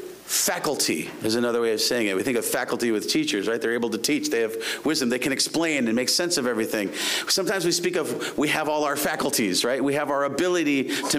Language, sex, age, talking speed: English, male, 40-59, 235 wpm